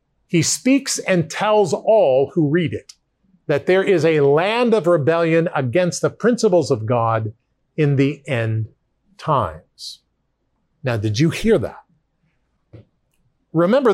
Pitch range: 125-165 Hz